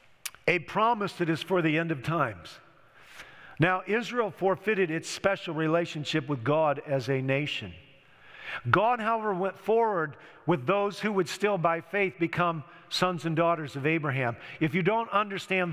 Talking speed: 155 wpm